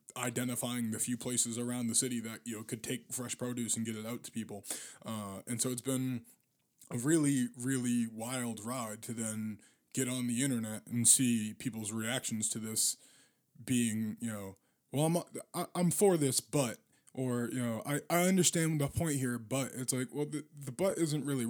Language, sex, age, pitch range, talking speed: English, male, 20-39, 115-130 Hz, 195 wpm